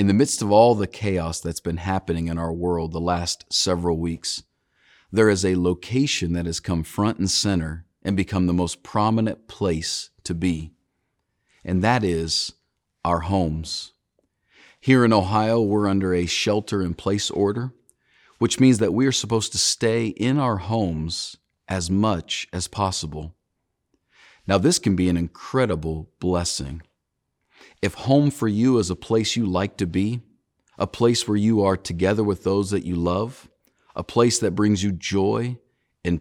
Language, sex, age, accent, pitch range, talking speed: English, male, 40-59, American, 85-110 Hz, 165 wpm